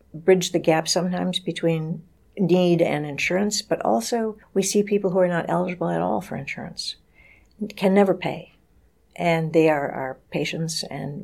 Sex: female